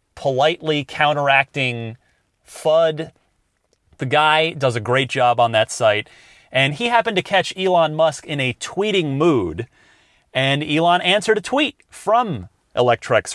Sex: male